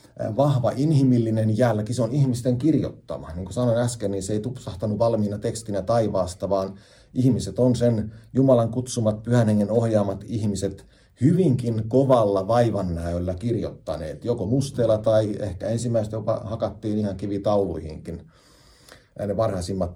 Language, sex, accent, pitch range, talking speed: Finnish, male, native, 100-125 Hz, 125 wpm